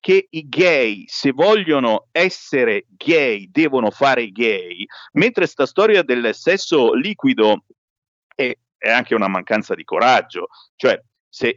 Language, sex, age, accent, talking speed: Italian, male, 50-69, native, 130 wpm